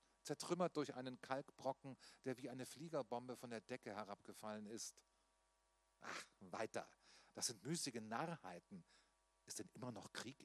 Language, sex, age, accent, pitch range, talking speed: German, male, 40-59, German, 95-135 Hz, 140 wpm